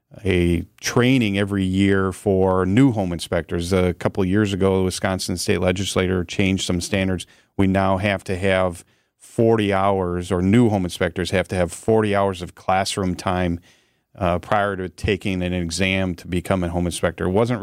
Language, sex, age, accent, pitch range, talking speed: English, male, 40-59, American, 90-100 Hz, 175 wpm